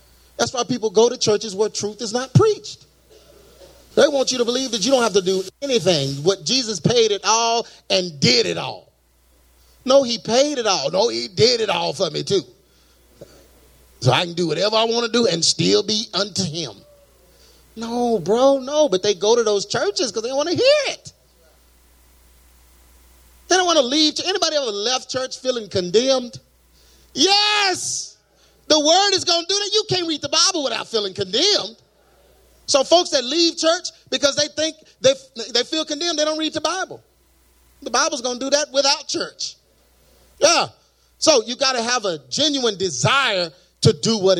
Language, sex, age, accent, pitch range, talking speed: English, male, 30-49, American, 185-290 Hz, 190 wpm